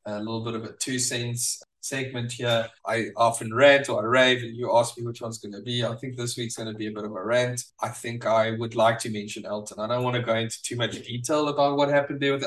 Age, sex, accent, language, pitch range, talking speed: 10-29, male, South African, English, 110-125 Hz, 280 wpm